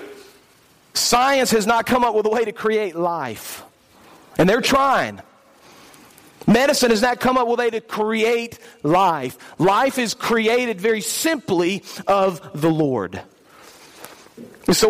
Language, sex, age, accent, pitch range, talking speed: English, male, 40-59, American, 200-245 Hz, 135 wpm